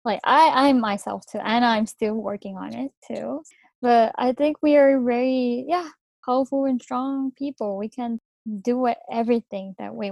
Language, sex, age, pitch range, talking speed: English, female, 20-39, 205-270 Hz, 170 wpm